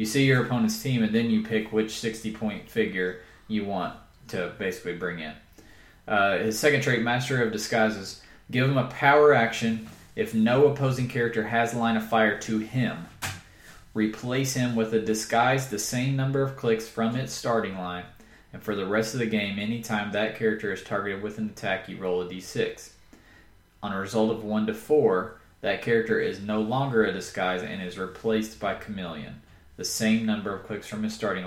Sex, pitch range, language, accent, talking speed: male, 100-125 Hz, English, American, 190 wpm